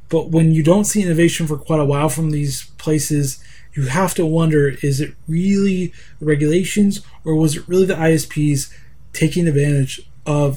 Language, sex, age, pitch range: English, male, 20-39, 140-185 Hz